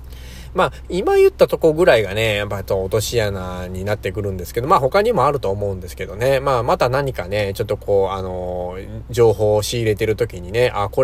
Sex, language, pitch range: male, Japanese, 90-120 Hz